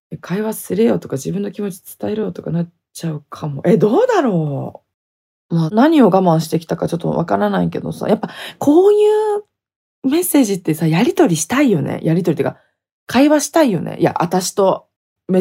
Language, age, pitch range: Japanese, 20-39, 155-230 Hz